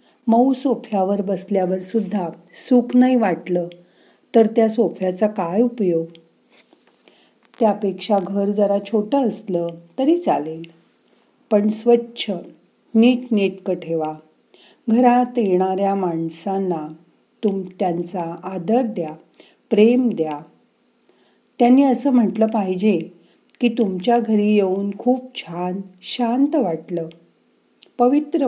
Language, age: Marathi, 40-59